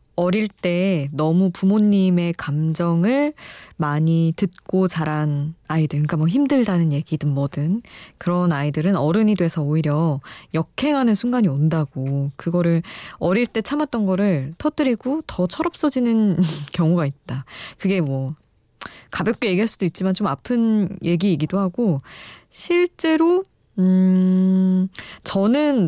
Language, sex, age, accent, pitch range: Korean, female, 20-39, native, 155-215 Hz